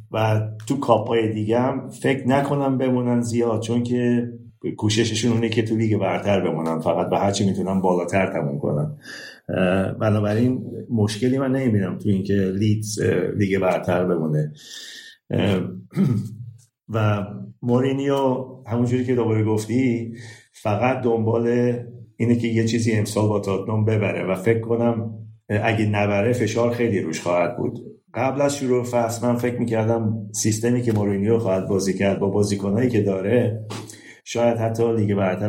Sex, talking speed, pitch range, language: male, 135 wpm, 100-120 Hz, Persian